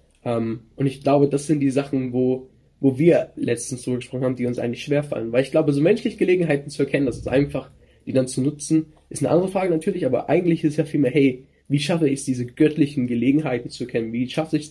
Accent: German